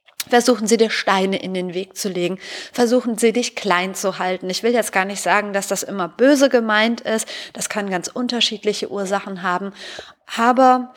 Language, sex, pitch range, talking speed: German, female, 190-245 Hz, 185 wpm